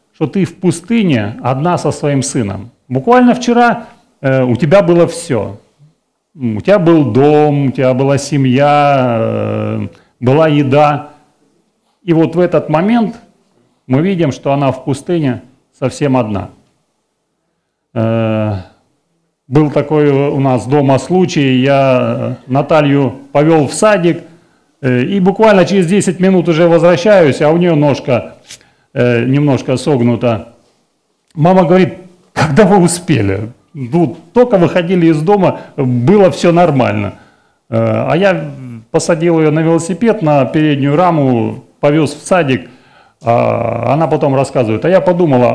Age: 40-59